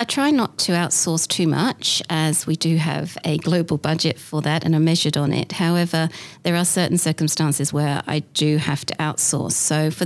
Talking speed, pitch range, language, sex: 205 wpm, 150-165 Hz, English, female